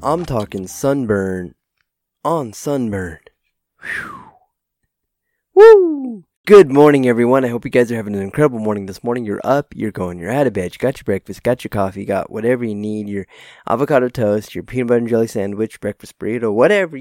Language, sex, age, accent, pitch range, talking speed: English, male, 20-39, American, 100-140 Hz, 185 wpm